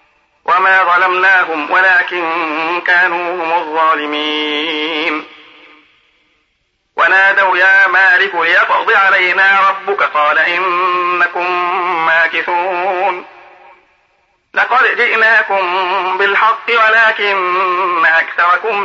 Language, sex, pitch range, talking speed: Arabic, male, 155-195 Hz, 65 wpm